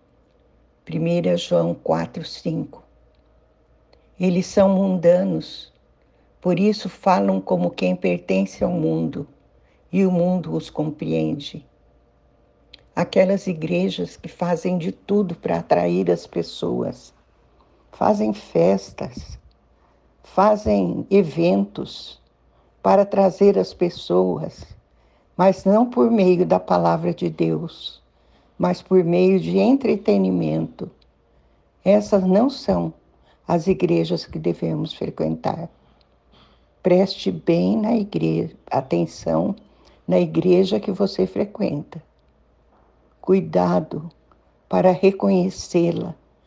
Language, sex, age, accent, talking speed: Portuguese, female, 60-79, Brazilian, 90 wpm